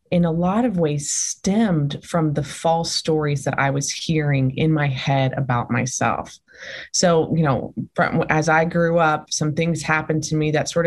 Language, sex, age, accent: English, female, 20-39, American